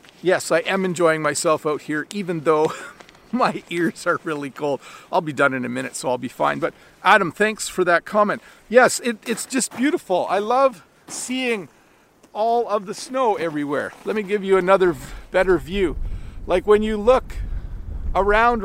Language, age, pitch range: English, 40-59, 150-195 Hz